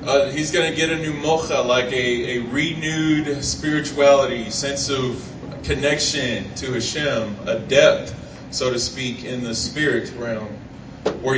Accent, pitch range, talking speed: American, 120-145 Hz, 150 wpm